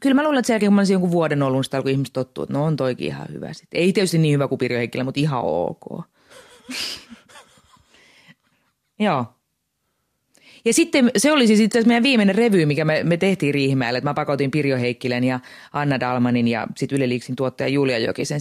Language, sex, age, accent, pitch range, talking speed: Finnish, female, 30-49, native, 130-175 Hz, 190 wpm